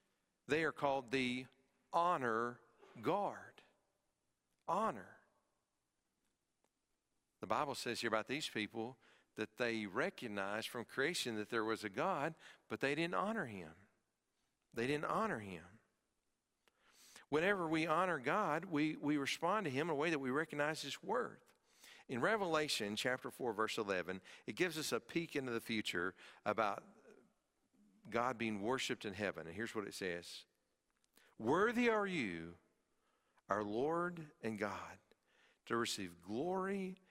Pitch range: 105-160 Hz